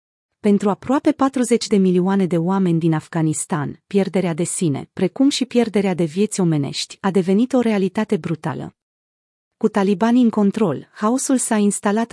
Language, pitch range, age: Romanian, 175-225 Hz, 30-49